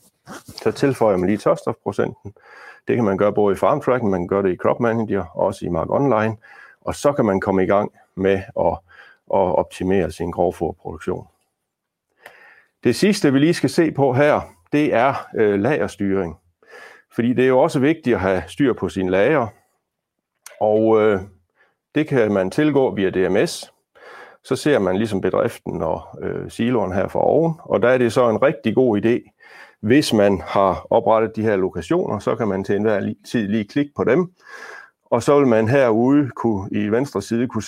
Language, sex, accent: Danish, male, native